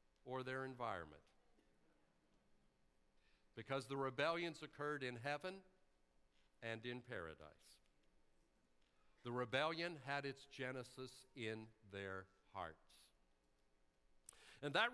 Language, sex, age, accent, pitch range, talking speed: English, male, 60-79, American, 115-155 Hz, 90 wpm